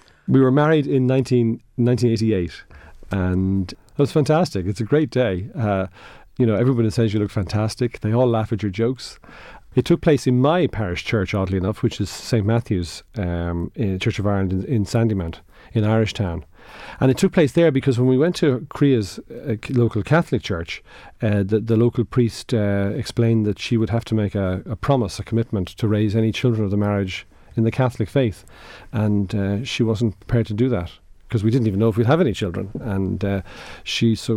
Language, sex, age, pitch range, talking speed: English, male, 40-59, 95-120 Hz, 205 wpm